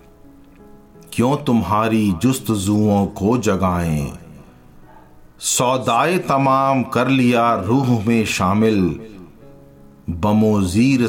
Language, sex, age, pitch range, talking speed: Hindi, male, 50-69, 90-125 Hz, 75 wpm